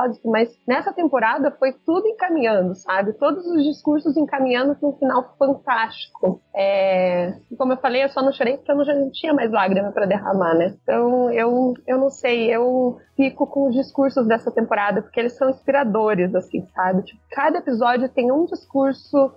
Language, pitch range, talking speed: Portuguese, 235-285 Hz, 165 wpm